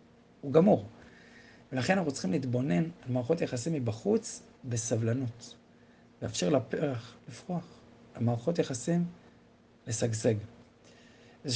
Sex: male